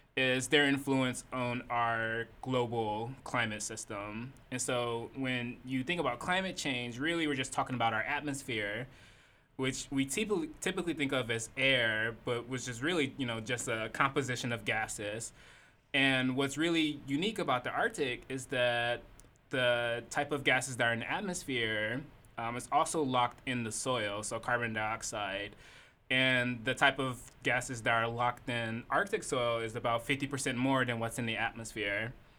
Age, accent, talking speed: 20-39, American, 165 wpm